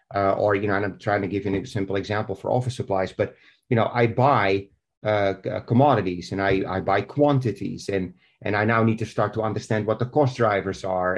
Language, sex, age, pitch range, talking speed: English, male, 30-49, 105-130 Hz, 225 wpm